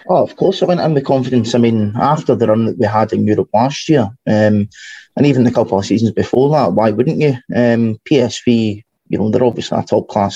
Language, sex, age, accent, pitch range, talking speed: English, male, 20-39, British, 105-125 Hz, 230 wpm